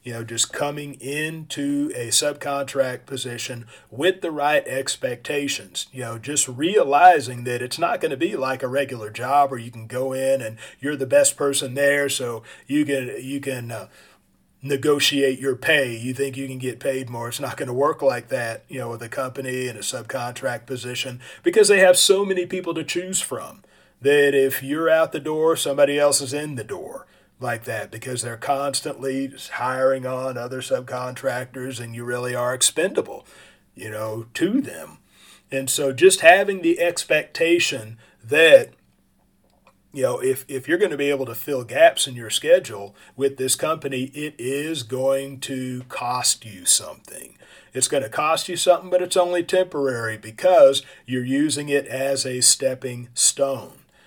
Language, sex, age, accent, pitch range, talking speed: English, male, 40-59, American, 125-150 Hz, 175 wpm